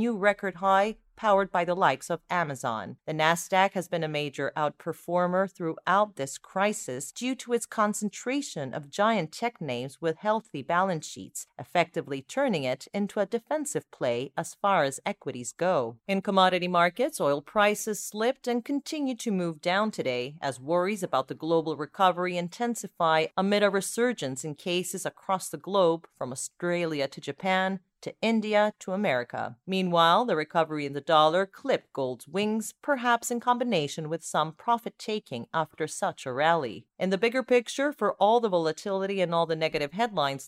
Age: 40-59